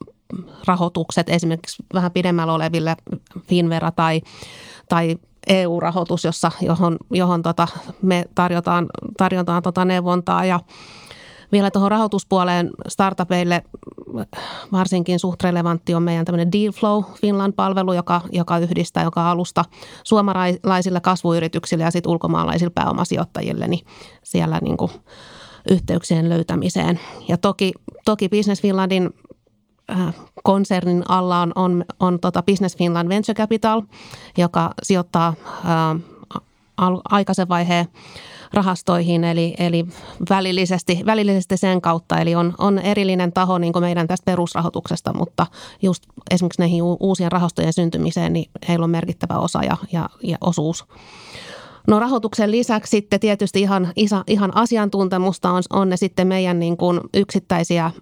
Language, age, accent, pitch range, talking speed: Finnish, 30-49, native, 170-195 Hz, 120 wpm